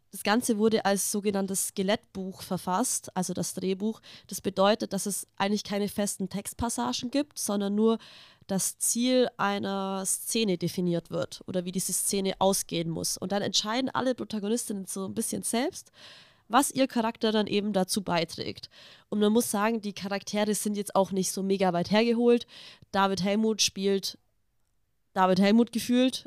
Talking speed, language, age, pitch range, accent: 160 wpm, German, 20-39, 185-220 Hz, German